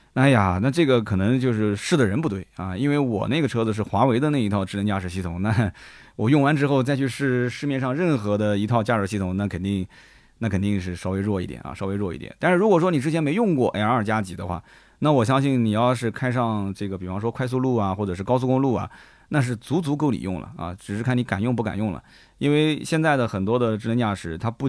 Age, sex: 20-39, male